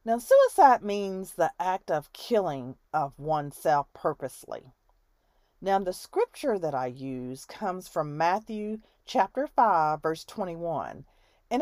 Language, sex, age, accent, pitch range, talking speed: English, female, 40-59, American, 155-225 Hz, 125 wpm